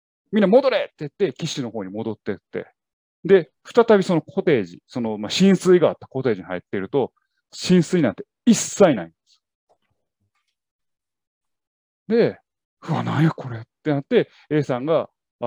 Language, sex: Japanese, male